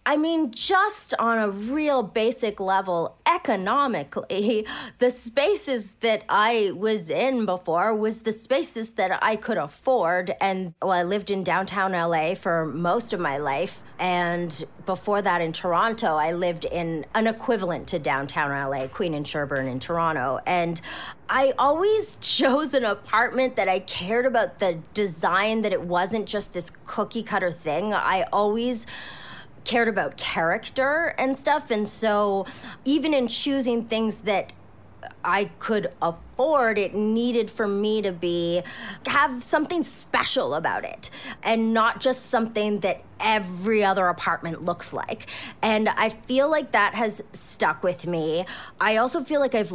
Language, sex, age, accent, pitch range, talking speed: English, female, 30-49, American, 175-235 Hz, 150 wpm